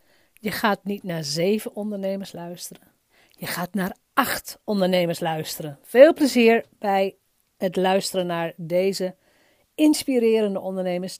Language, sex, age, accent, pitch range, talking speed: Dutch, female, 40-59, Dutch, 180-240 Hz, 120 wpm